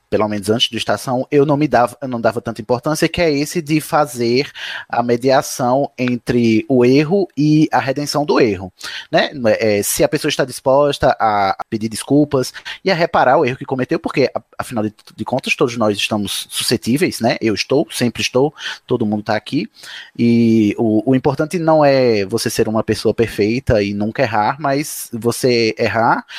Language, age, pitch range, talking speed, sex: Portuguese, 20-39, 110-145 Hz, 175 wpm, male